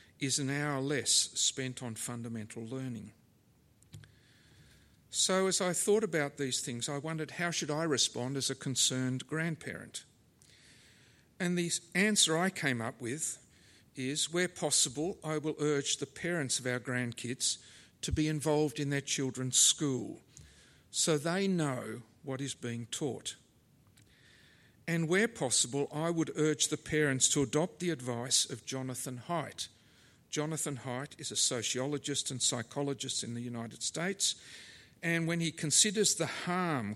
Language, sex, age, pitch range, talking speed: English, male, 50-69, 125-155 Hz, 145 wpm